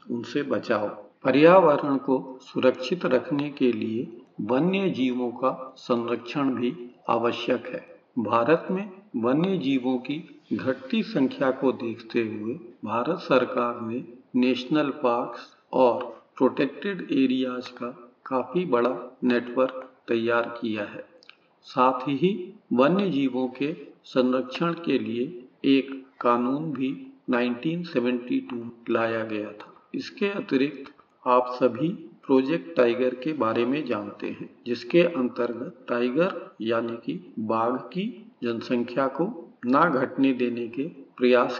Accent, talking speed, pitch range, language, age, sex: native, 115 wpm, 120-150 Hz, Hindi, 50-69, male